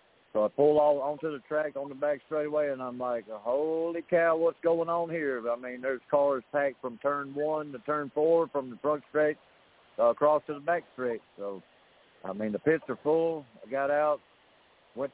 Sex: male